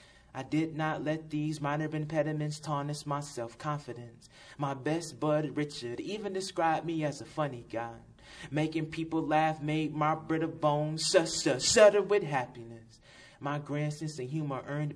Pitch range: 125-175 Hz